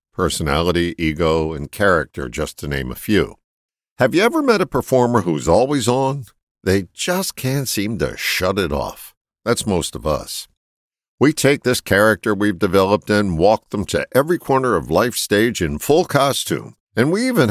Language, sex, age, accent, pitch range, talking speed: English, male, 50-69, American, 85-135 Hz, 175 wpm